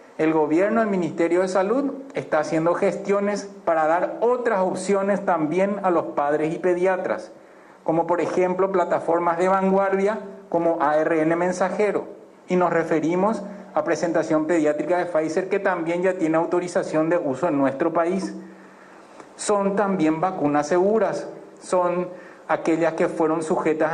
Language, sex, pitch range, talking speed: Spanish, male, 160-190 Hz, 140 wpm